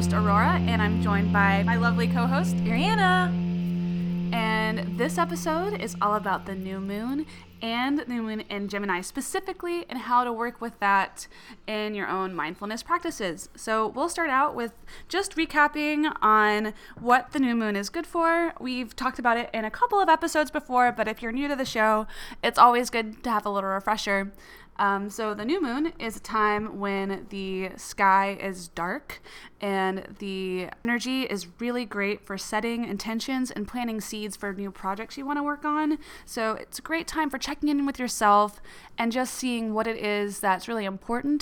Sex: female